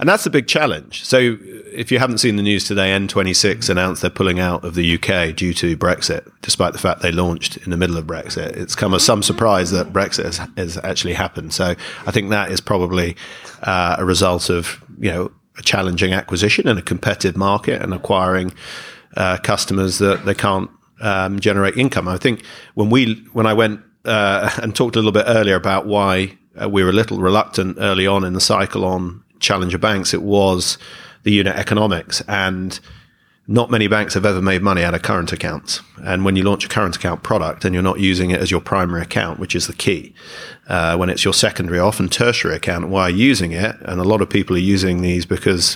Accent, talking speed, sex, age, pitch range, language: British, 210 wpm, male, 40-59, 90-105 Hz, English